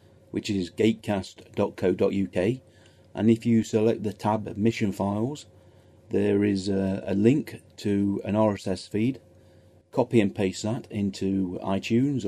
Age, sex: 40-59, male